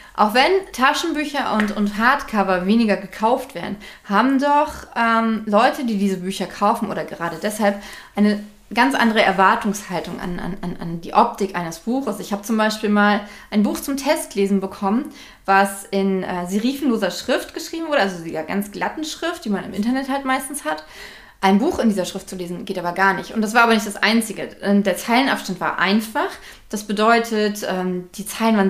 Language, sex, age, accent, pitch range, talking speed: German, female, 20-39, German, 195-245 Hz, 180 wpm